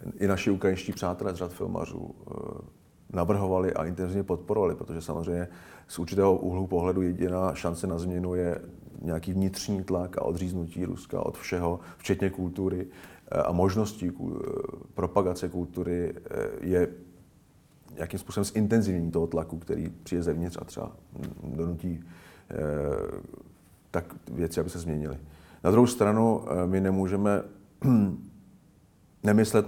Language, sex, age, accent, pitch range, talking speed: Czech, male, 40-59, native, 85-100 Hz, 120 wpm